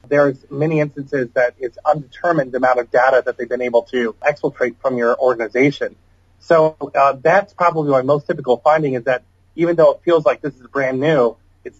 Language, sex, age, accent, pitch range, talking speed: English, male, 30-49, American, 120-150 Hz, 195 wpm